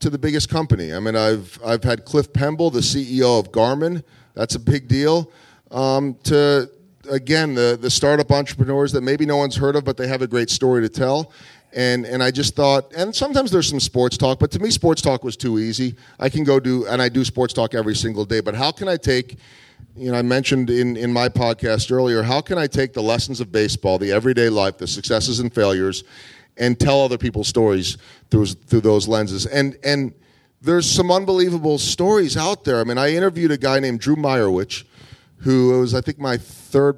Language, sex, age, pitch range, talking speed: English, male, 40-59, 110-140 Hz, 215 wpm